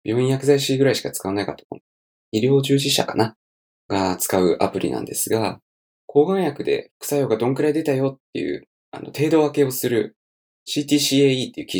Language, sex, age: Japanese, male, 20-39